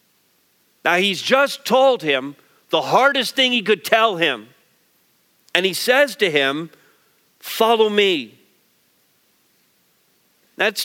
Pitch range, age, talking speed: 190-255 Hz, 40-59, 110 wpm